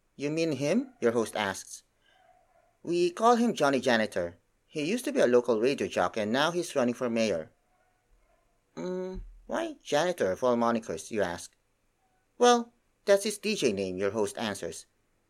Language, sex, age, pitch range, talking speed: English, male, 30-49, 100-165 Hz, 160 wpm